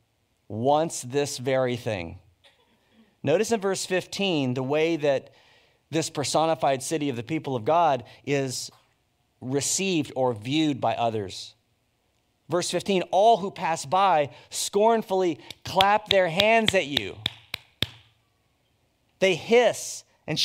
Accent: American